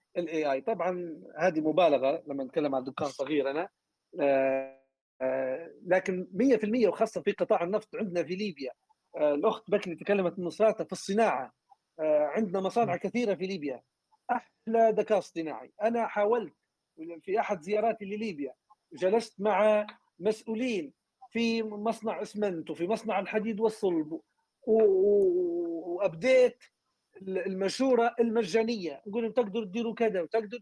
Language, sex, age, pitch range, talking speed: Arabic, male, 40-59, 185-235 Hz, 110 wpm